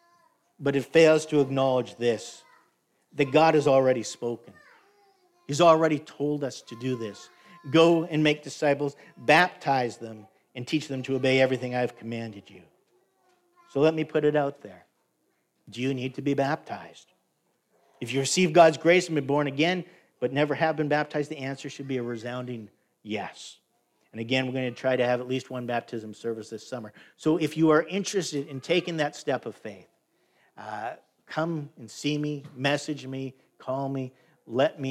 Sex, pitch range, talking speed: male, 120-150 Hz, 180 wpm